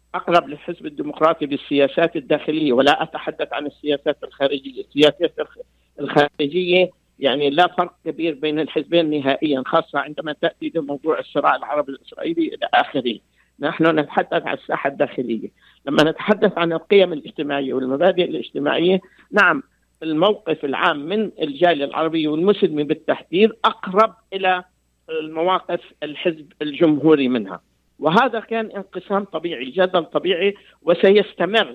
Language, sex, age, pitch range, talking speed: Arabic, male, 50-69, 150-185 Hz, 115 wpm